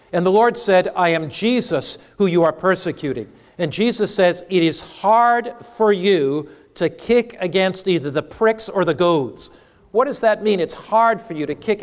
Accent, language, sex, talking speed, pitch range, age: American, English, male, 195 wpm, 175-220 Hz, 50-69